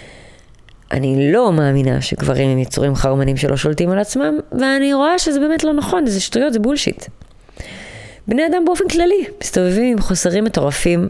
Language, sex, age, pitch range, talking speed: Hebrew, female, 20-39, 145-225 Hz, 155 wpm